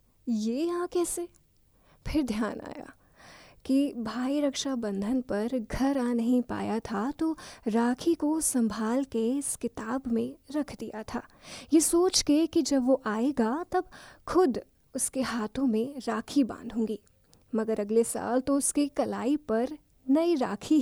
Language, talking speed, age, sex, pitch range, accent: Hindi, 140 wpm, 20-39, female, 230-300 Hz, native